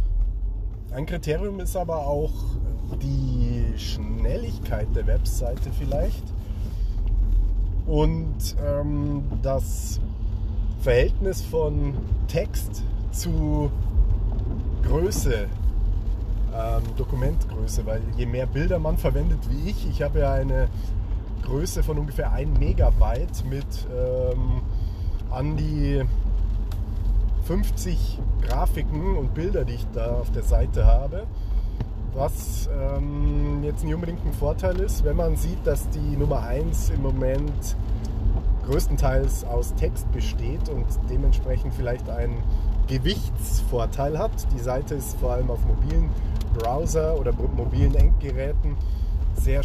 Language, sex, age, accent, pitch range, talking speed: German, male, 30-49, German, 90-110 Hz, 110 wpm